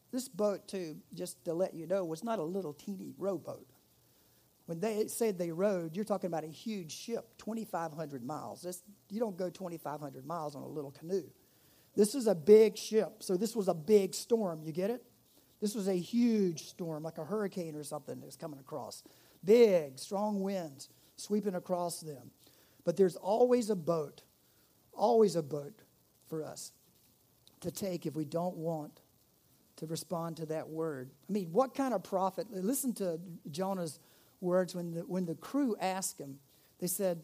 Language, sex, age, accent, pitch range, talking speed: English, male, 50-69, American, 165-225 Hz, 180 wpm